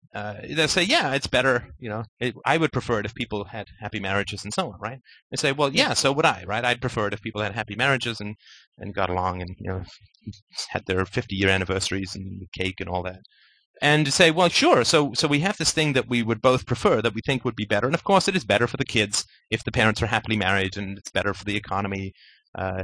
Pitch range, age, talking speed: 100-145 Hz, 30-49, 260 wpm